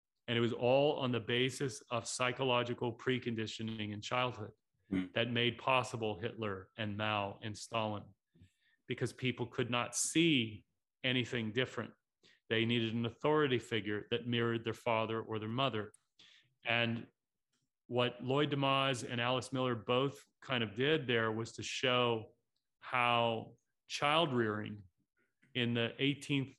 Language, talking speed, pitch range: English, 135 wpm, 110-130 Hz